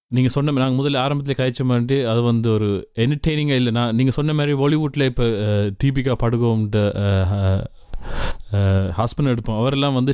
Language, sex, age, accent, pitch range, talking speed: Tamil, male, 30-49, native, 115-140 Hz, 140 wpm